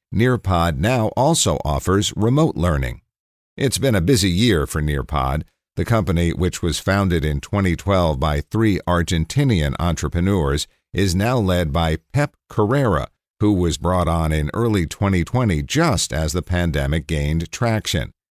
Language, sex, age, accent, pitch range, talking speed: English, male, 50-69, American, 80-105 Hz, 140 wpm